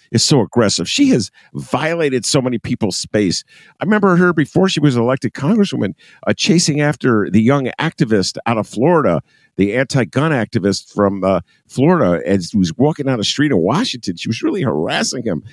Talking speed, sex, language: 180 wpm, male, English